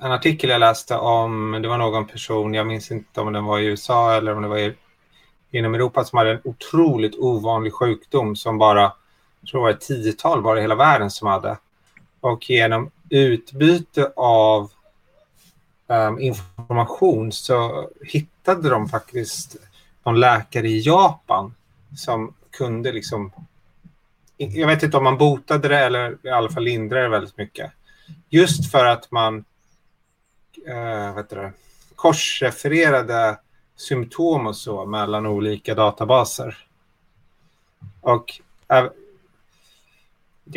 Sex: male